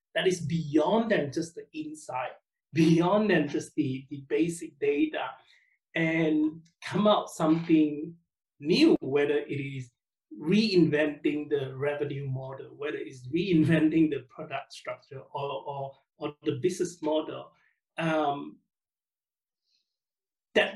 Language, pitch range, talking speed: English, 150-210 Hz, 115 wpm